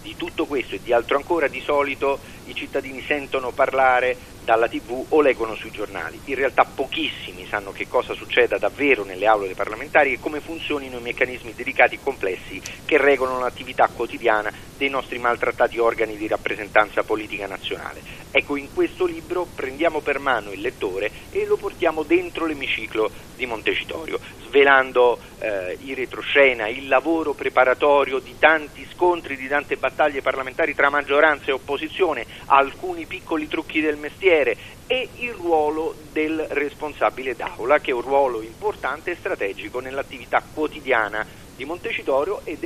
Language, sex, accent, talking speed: Italian, male, native, 150 wpm